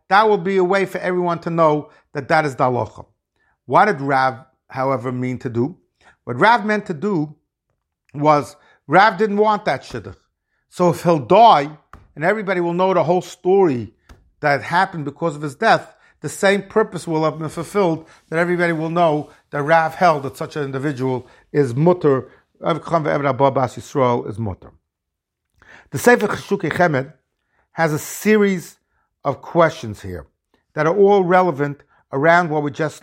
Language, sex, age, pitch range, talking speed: English, male, 50-69, 130-170 Hz, 160 wpm